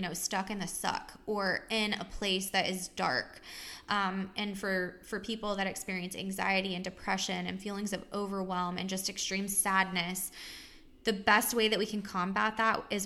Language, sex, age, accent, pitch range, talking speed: English, female, 20-39, American, 185-210 Hz, 180 wpm